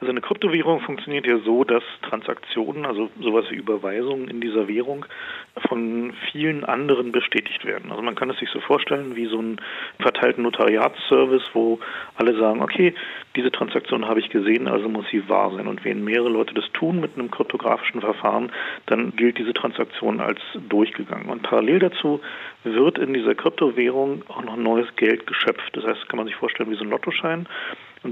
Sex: male